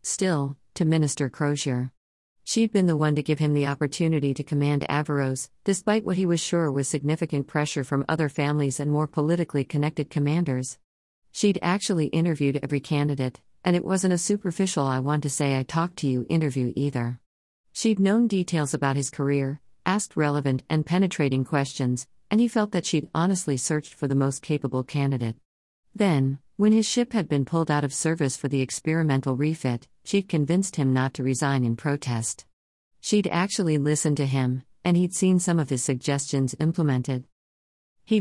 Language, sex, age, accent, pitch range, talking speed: English, female, 50-69, American, 135-170 Hz, 175 wpm